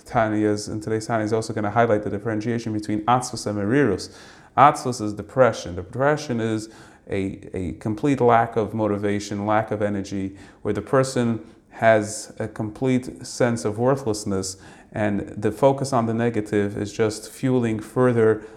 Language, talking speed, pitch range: English, 155 wpm, 105-125 Hz